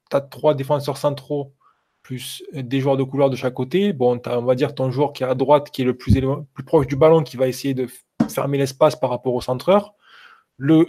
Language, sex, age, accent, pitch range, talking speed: French, male, 20-39, French, 125-145 Hz, 235 wpm